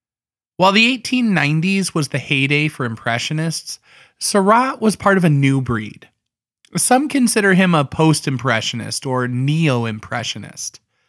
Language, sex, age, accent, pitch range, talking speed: English, male, 20-39, American, 130-195 Hz, 120 wpm